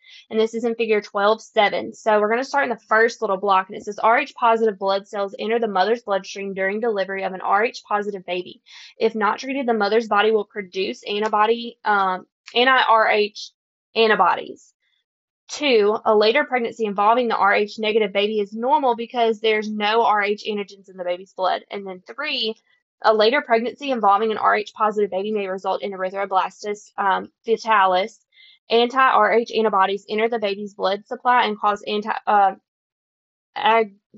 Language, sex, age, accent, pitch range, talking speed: English, female, 20-39, American, 200-230 Hz, 160 wpm